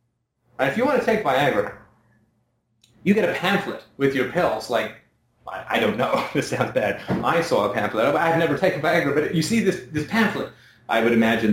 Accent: American